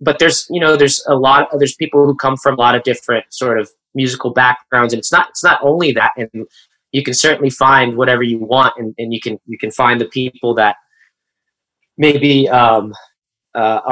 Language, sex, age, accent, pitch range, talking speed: English, male, 20-39, American, 125-150 Hz, 210 wpm